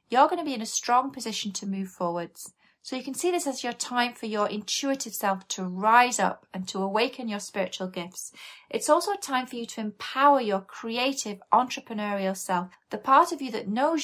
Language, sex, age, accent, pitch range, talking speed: English, female, 30-49, British, 195-255 Hz, 215 wpm